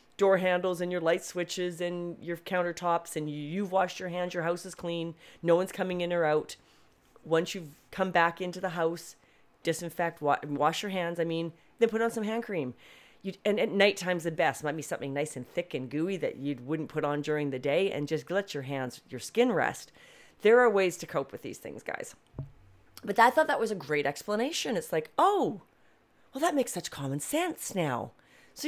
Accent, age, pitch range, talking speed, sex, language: American, 40-59, 155-205 Hz, 210 wpm, female, English